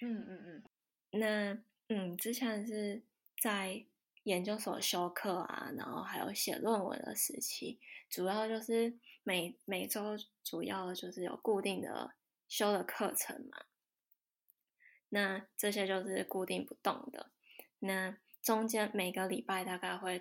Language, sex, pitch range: Chinese, female, 185-220 Hz